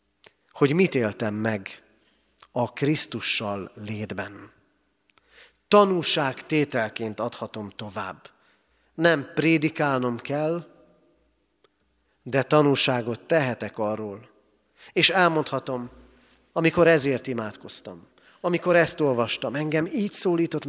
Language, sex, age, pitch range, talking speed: Hungarian, male, 40-59, 110-160 Hz, 85 wpm